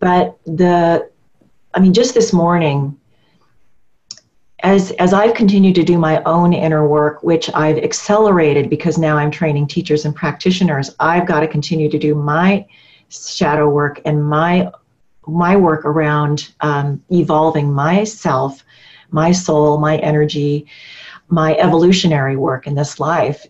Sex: female